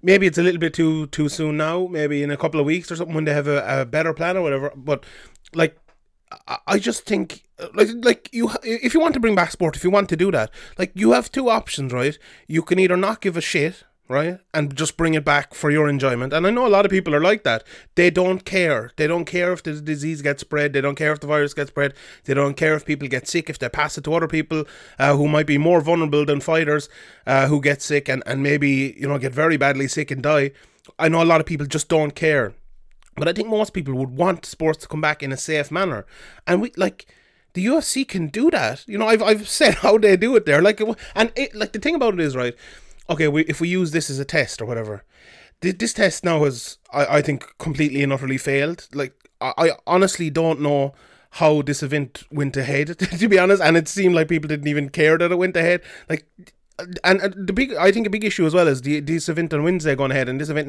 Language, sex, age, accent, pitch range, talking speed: English, male, 30-49, Irish, 145-180 Hz, 255 wpm